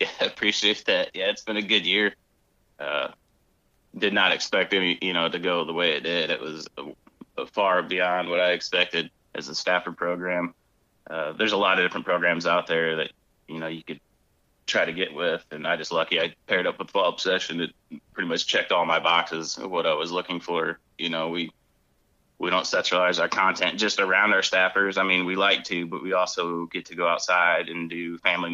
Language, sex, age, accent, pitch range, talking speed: English, male, 30-49, American, 85-95 Hz, 220 wpm